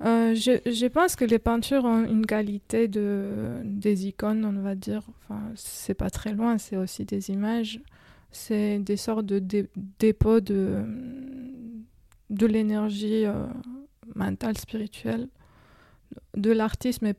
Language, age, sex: French, 20-39, female